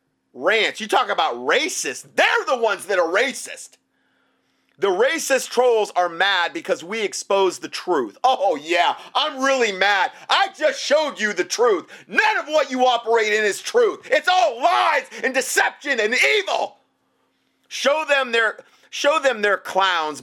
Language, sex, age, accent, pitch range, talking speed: English, male, 40-59, American, 195-285 Hz, 160 wpm